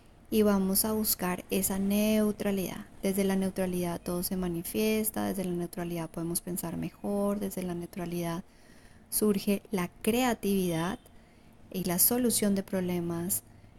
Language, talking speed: Spanish, 125 wpm